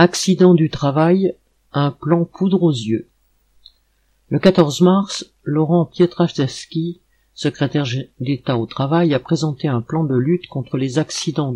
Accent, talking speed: French, 135 wpm